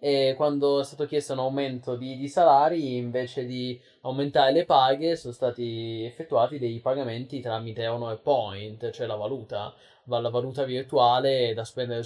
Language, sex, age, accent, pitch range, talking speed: Italian, male, 20-39, native, 120-155 Hz, 155 wpm